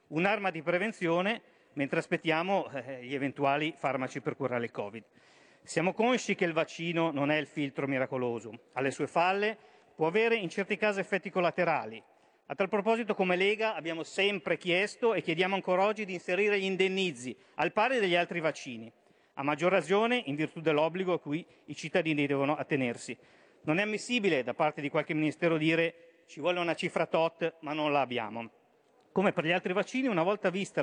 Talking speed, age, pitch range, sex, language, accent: 175 wpm, 50-69, 145-185 Hz, male, Italian, native